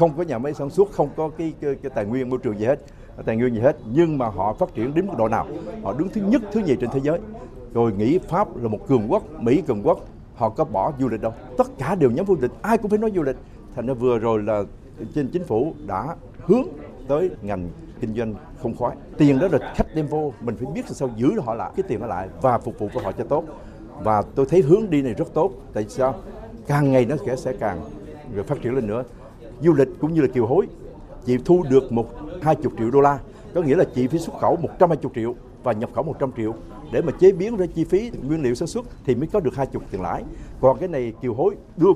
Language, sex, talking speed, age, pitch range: Vietnamese, male, 260 wpm, 60-79, 115-155 Hz